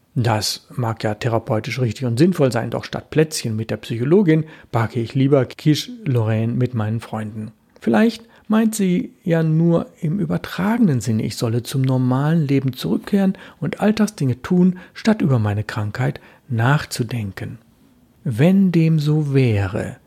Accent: German